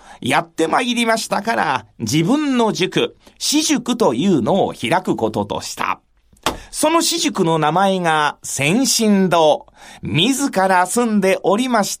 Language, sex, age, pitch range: Japanese, male, 40-59, 175-250 Hz